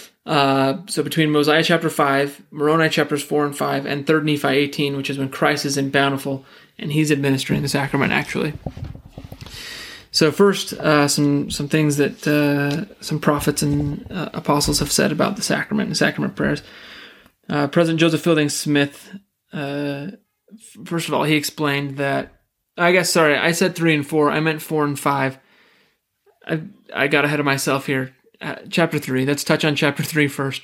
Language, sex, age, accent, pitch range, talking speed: English, male, 20-39, American, 140-160 Hz, 180 wpm